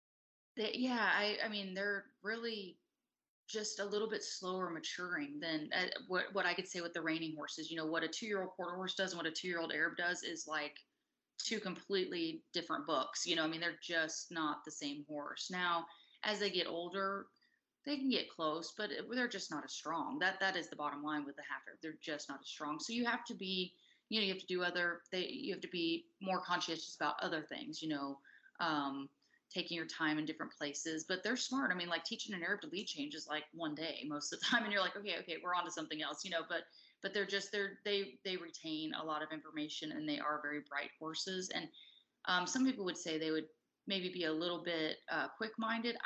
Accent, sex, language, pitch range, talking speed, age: American, female, English, 155-200 Hz, 235 wpm, 30-49